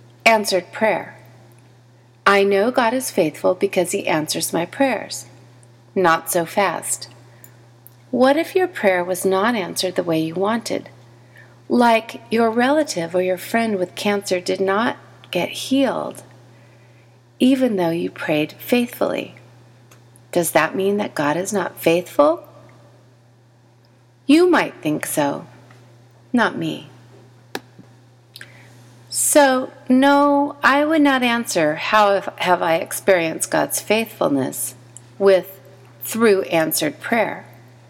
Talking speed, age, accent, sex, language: 115 wpm, 30-49, American, female, English